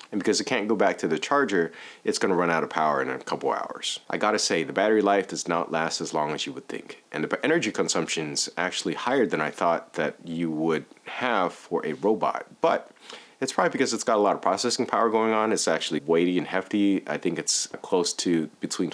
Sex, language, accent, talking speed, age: male, English, American, 245 wpm, 30-49